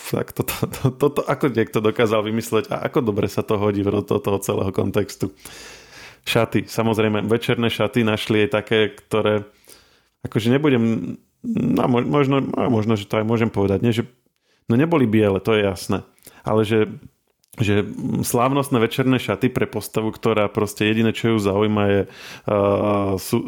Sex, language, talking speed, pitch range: male, Slovak, 165 wpm, 105-120 Hz